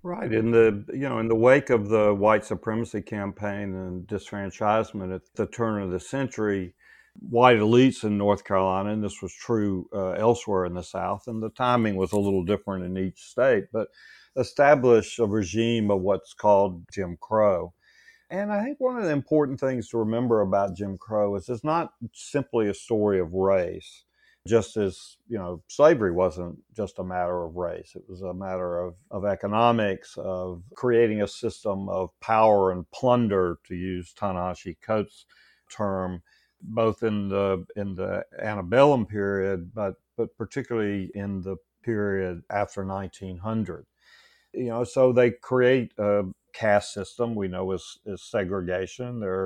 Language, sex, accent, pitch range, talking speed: English, male, American, 95-115 Hz, 165 wpm